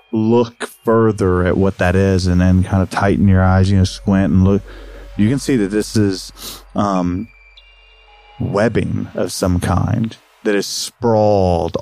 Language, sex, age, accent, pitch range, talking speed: English, male, 30-49, American, 95-115 Hz, 160 wpm